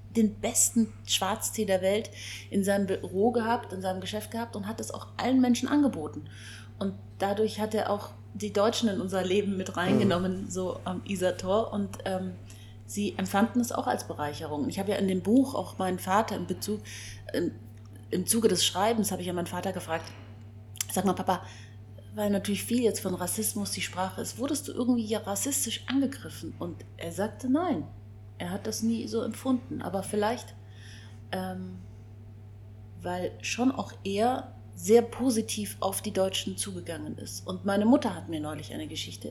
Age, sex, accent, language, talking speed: 30-49, female, German, German, 175 wpm